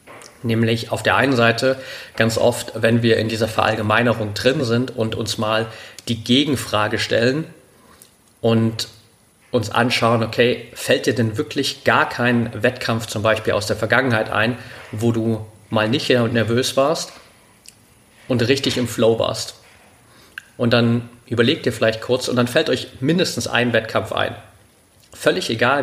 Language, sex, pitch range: German, male, 110-125 Hz